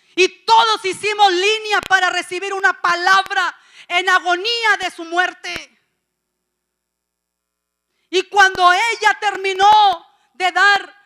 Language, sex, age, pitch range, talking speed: English, female, 40-59, 315-380 Hz, 105 wpm